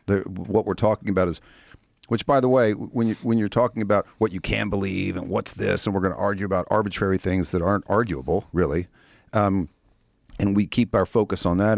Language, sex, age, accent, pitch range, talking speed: English, male, 50-69, American, 85-105 Hz, 215 wpm